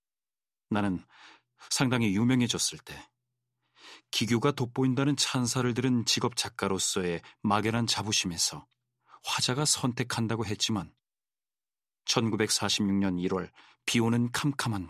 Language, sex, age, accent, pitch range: Korean, male, 40-59, native, 95-130 Hz